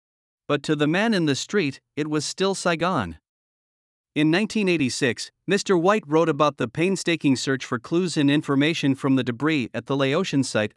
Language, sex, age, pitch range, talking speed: Vietnamese, male, 50-69, 130-170 Hz, 175 wpm